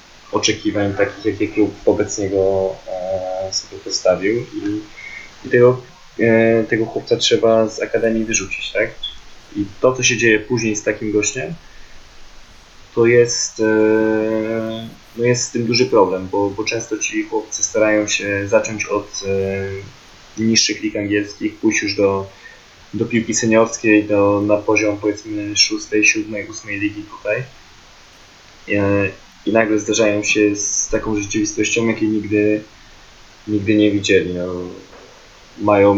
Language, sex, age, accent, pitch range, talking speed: Polish, male, 20-39, native, 100-110 Hz, 135 wpm